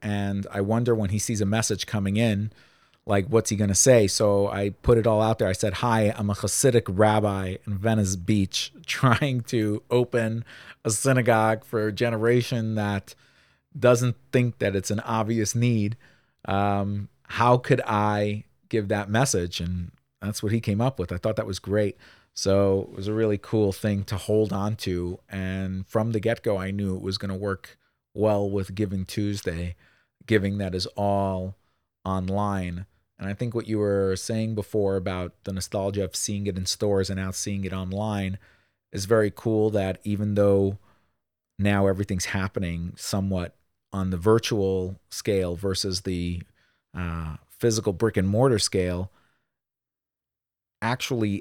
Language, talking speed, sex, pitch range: English, 165 wpm, male, 95-110 Hz